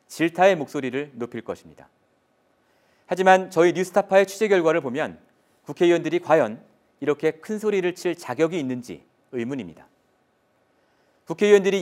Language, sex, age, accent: Korean, male, 40-59, native